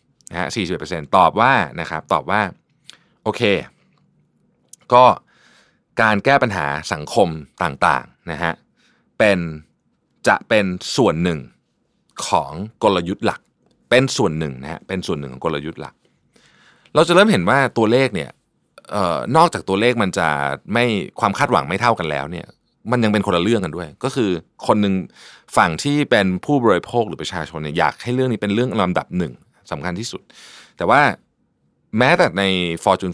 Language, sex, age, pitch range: Thai, male, 20-39, 80-125 Hz